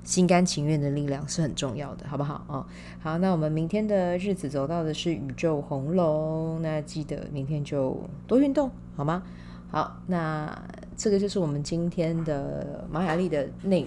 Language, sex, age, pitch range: Chinese, female, 20-39, 140-180 Hz